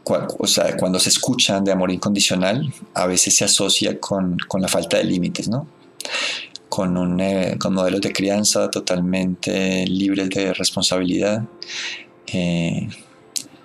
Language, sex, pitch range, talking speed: Spanish, male, 90-105 Hz, 135 wpm